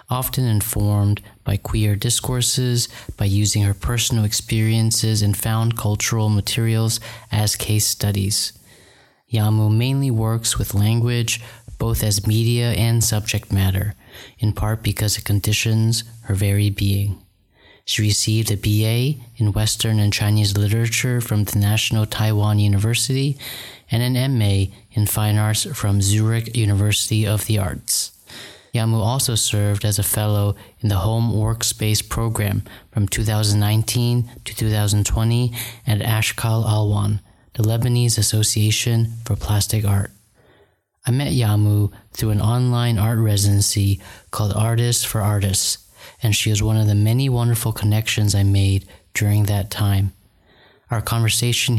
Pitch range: 105-115 Hz